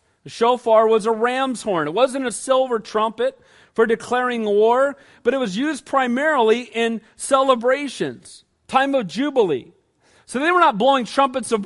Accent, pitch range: American, 195-270 Hz